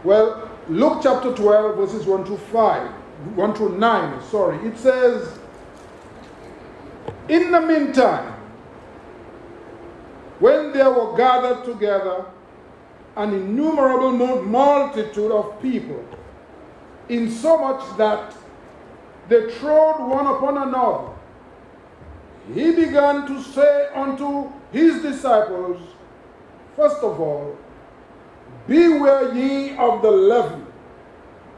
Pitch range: 215-290 Hz